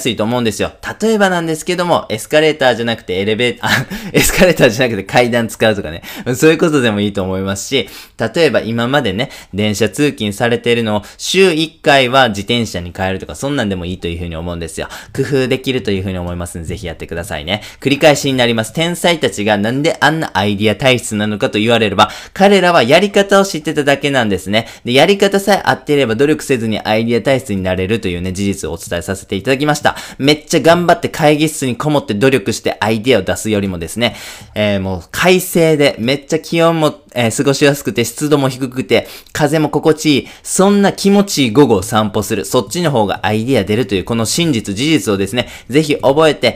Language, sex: Japanese, male